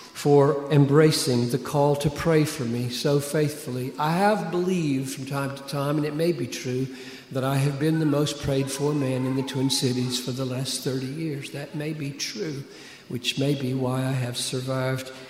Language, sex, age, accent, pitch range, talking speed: English, male, 50-69, American, 125-145 Hz, 195 wpm